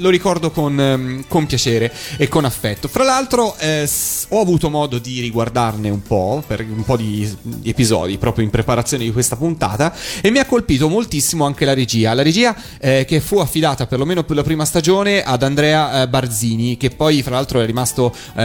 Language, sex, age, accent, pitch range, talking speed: Italian, male, 30-49, native, 120-160 Hz, 190 wpm